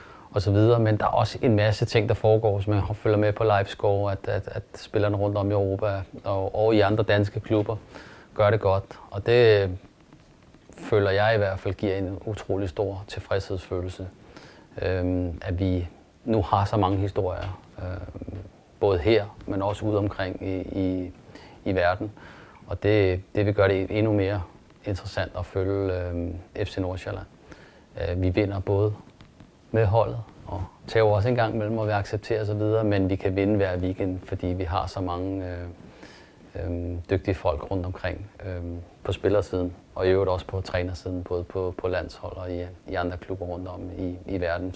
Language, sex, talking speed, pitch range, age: Danish, male, 180 wpm, 90-105 Hz, 30-49